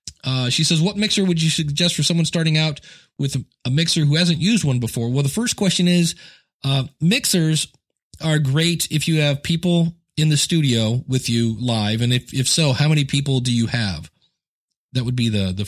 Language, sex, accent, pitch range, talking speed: English, male, American, 115-155 Hz, 205 wpm